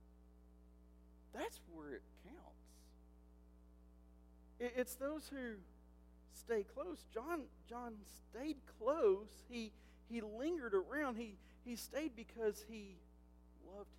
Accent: American